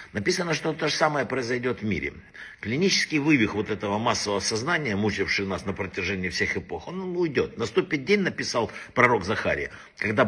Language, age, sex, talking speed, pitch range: Russian, 60-79, male, 165 wpm, 100-140 Hz